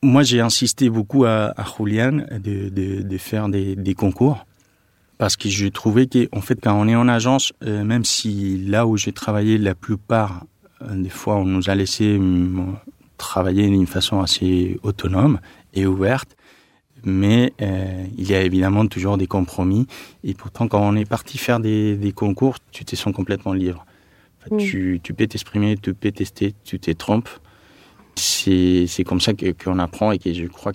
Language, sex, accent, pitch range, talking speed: French, male, French, 95-120 Hz, 180 wpm